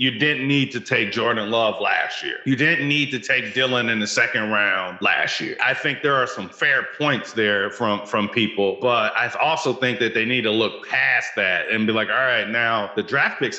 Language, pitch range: English, 115-140 Hz